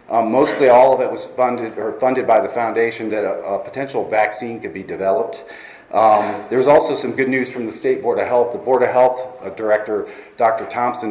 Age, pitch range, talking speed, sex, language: 40-59, 110-155 Hz, 210 wpm, male, English